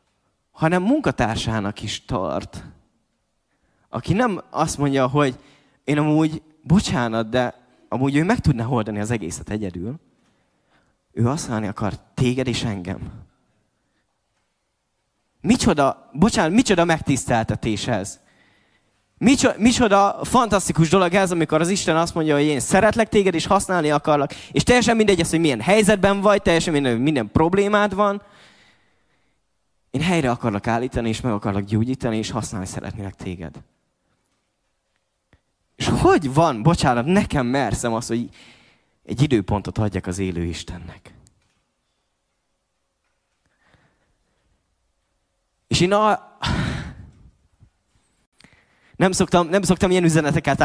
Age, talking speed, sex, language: 20-39, 115 wpm, male, Hungarian